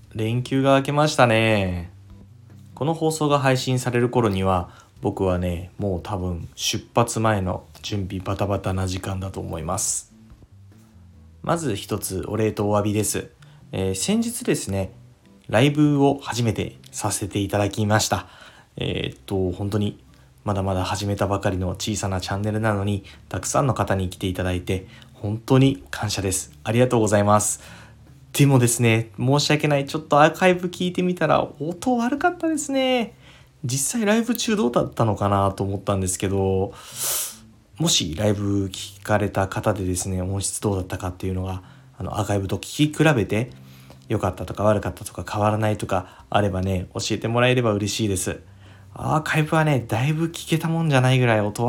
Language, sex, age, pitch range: Japanese, male, 20-39, 95-130 Hz